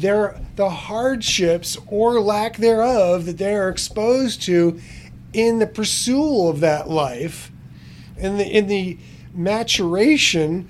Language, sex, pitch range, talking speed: English, male, 165-210 Hz, 130 wpm